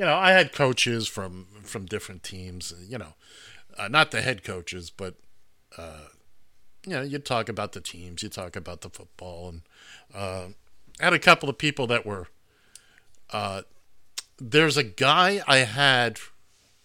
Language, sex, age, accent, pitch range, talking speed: English, male, 50-69, American, 95-135 Hz, 160 wpm